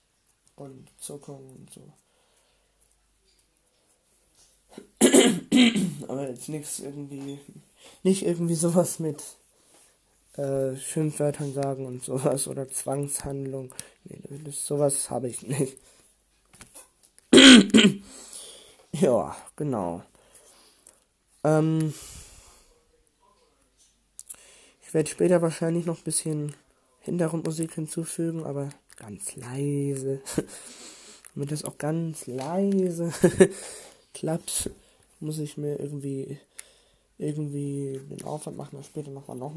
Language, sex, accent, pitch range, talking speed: German, male, German, 140-175 Hz, 90 wpm